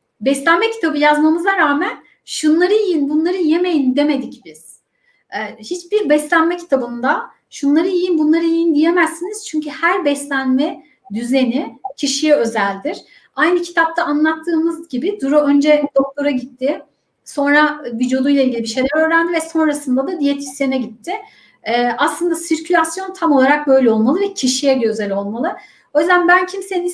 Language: Turkish